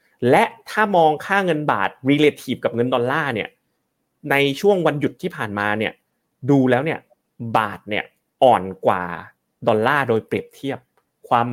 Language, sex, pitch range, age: Thai, male, 105-135 Hz, 30-49